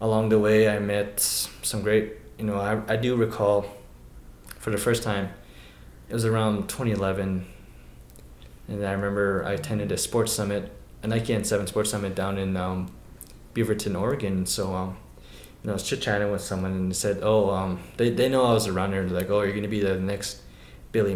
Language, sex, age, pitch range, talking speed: English, male, 20-39, 95-110 Hz, 200 wpm